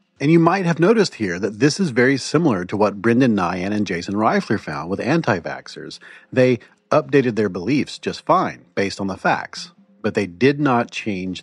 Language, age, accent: English, 40-59, American